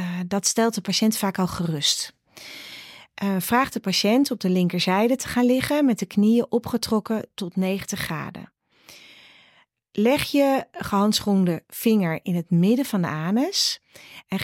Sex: female